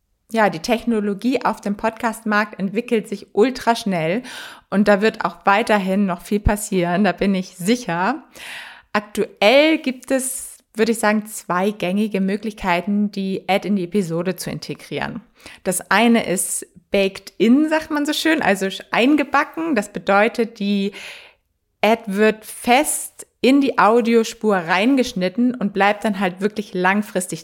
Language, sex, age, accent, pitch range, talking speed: German, female, 20-39, German, 190-235 Hz, 140 wpm